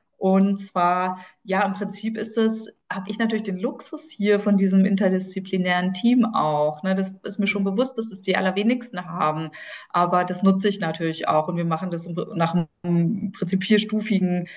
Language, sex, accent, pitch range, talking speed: German, female, German, 175-205 Hz, 175 wpm